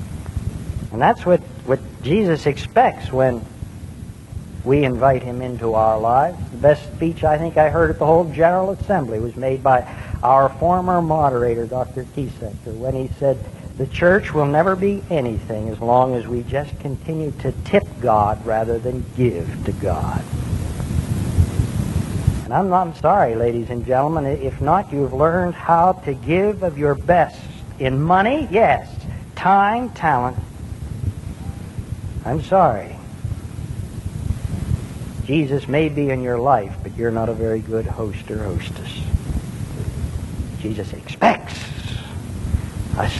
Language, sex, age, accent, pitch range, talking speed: English, male, 60-79, American, 110-150 Hz, 135 wpm